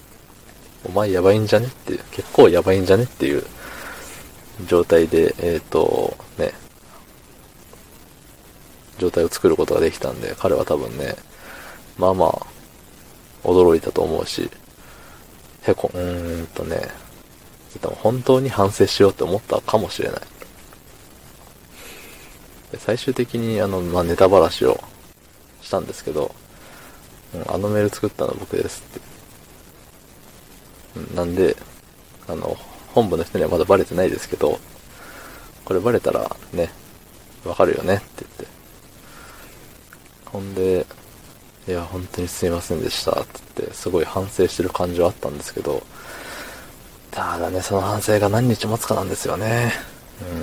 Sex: male